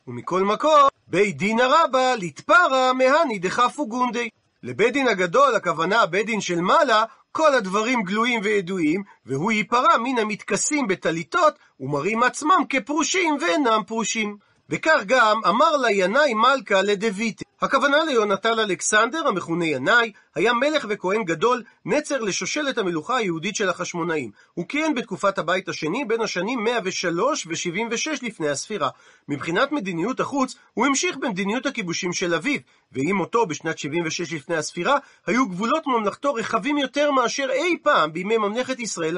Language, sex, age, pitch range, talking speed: Hebrew, male, 40-59, 180-275 Hz, 135 wpm